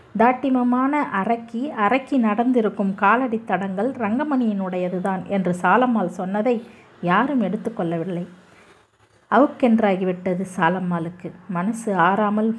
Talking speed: 75 wpm